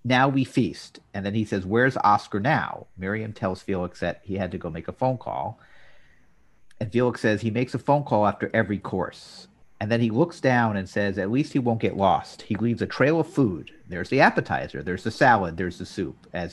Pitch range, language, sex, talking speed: 100-130 Hz, English, male, 225 wpm